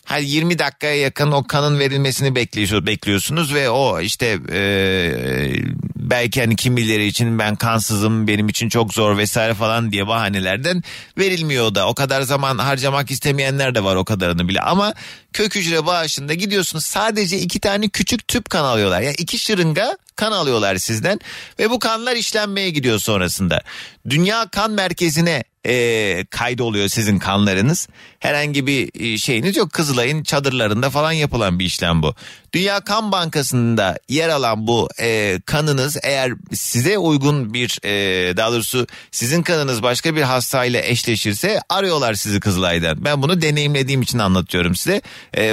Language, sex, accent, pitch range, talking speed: Turkish, male, native, 110-160 Hz, 150 wpm